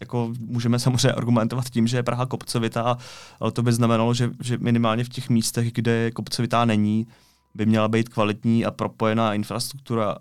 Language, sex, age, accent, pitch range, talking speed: Czech, male, 20-39, native, 115-135 Hz, 170 wpm